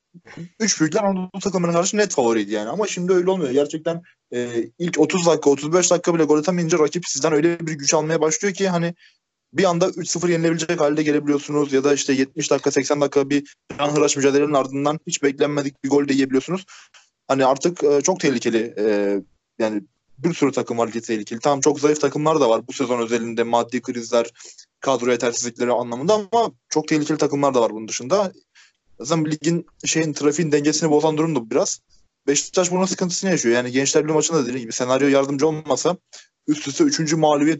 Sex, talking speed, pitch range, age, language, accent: male, 180 wpm, 120-155 Hz, 20-39, Turkish, native